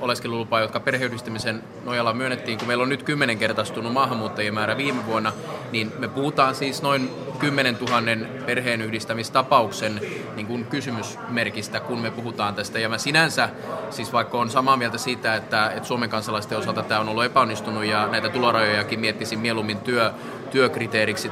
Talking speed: 145 wpm